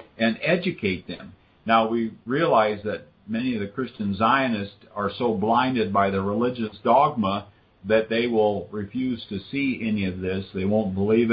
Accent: American